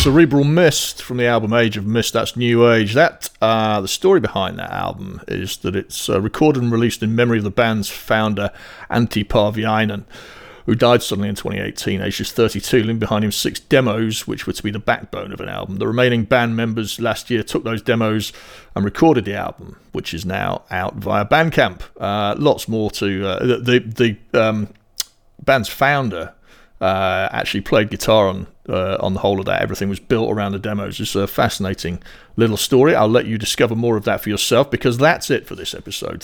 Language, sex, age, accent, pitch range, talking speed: English, male, 40-59, British, 100-120 Hz, 200 wpm